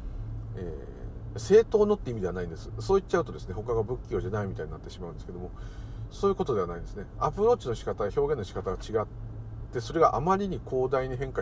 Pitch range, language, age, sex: 80-115 Hz, Japanese, 50-69, male